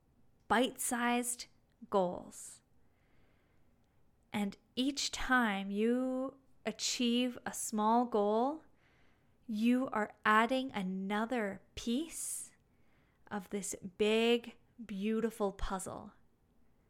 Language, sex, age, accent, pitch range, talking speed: English, female, 10-29, American, 215-270 Hz, 70 wpm